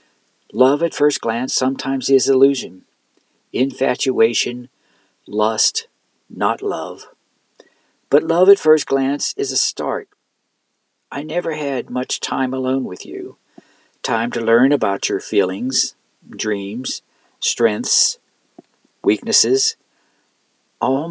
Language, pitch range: English, 125-150 Hz